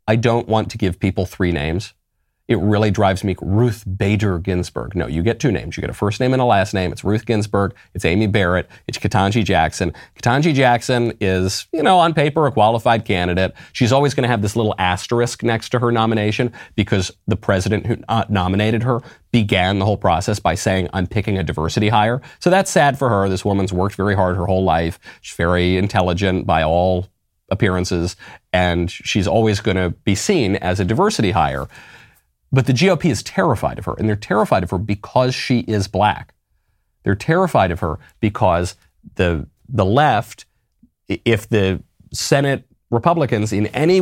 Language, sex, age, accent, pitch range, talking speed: English, male, 30-49, American, 95-120 Hz, 190 wpm